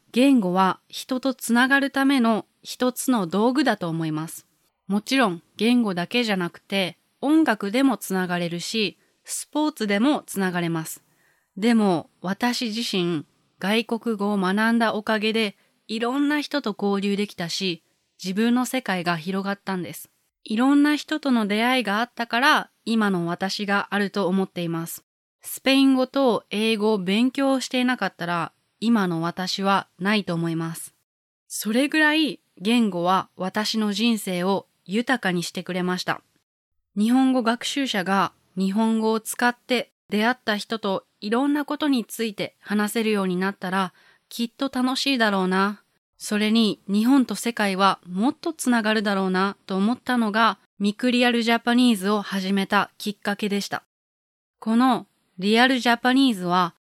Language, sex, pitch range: English, female, 190-245 Hz